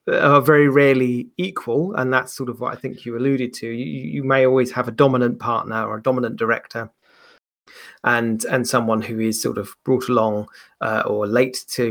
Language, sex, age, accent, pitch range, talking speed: English, male, 30-49, British, 120-140 Hz, 195 wpm